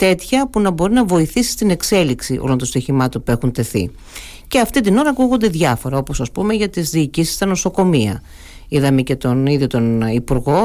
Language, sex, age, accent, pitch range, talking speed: Greek, female, 50-69, native, 130-195 Hz, 180 wpm